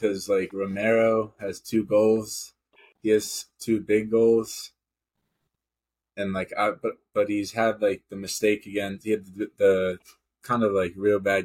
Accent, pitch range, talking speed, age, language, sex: American, 95-105 Hz, 160 wpm, 20-39, English, male